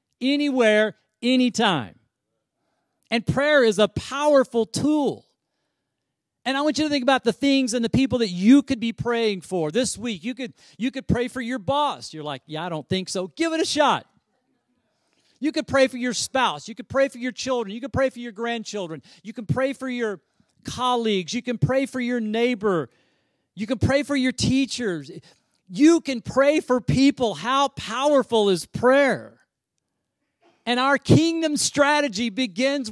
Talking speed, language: 175 wpm, English